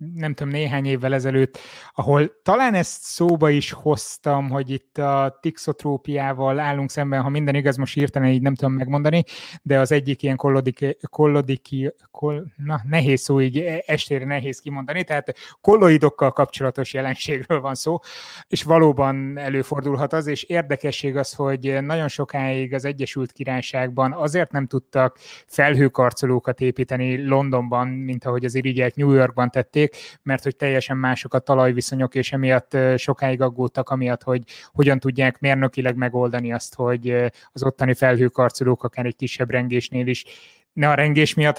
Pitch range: 125-145 Hz